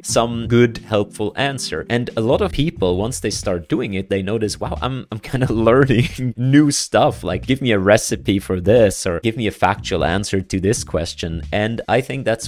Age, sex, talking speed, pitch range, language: 30-49, male, 210 wpm, 95-120 Hz, English